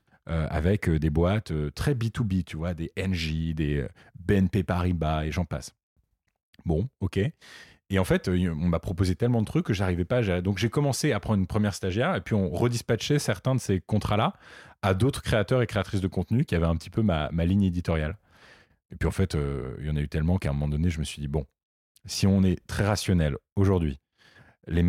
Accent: French